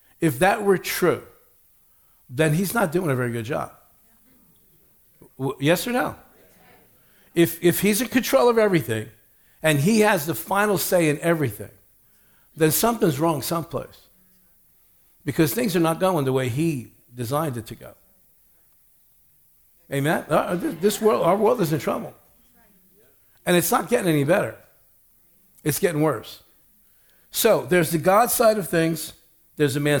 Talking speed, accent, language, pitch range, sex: 145 wpm, American, English, 135-195 Hz, male